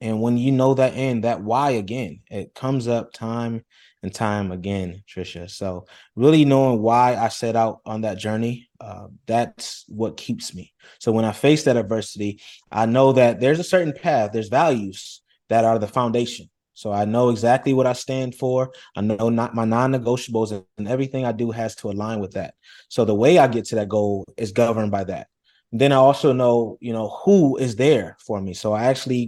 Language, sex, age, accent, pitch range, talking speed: English, male, 20-39, American, 110-130 Hz, 205 wpm